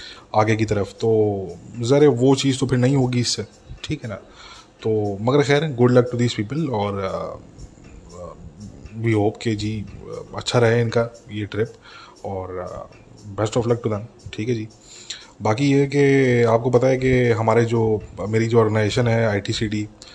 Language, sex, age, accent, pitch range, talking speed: English, male, 20-39, Indian, 105-120 Hz, 160 wpm